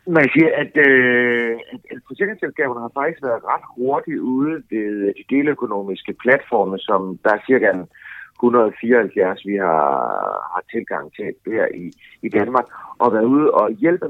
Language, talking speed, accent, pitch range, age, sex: Danish, 155 wpm, native, 110-160 Hz, 60-79, male